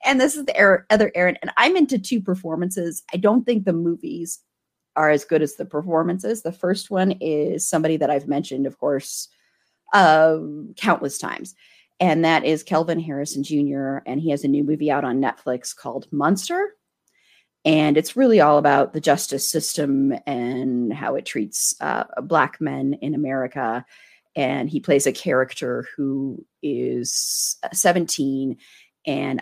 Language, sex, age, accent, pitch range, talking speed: English, female, 30-49, American, 135-180 Hz, 160 wpm